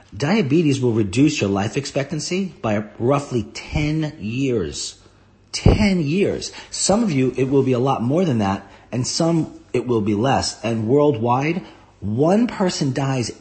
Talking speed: 150 wpm